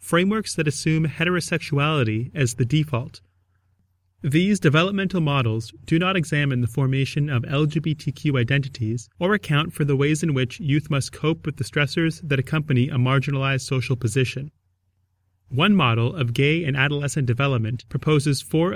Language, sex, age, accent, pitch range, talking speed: English, male, 30-49, American, 115-160 Hz, 145 wpm